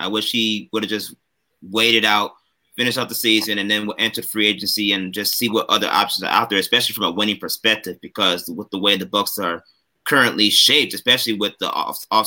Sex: male